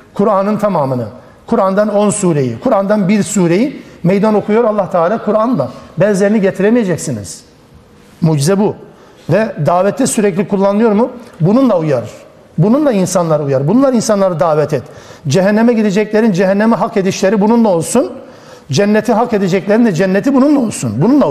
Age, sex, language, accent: 60-79, male, Turkish, native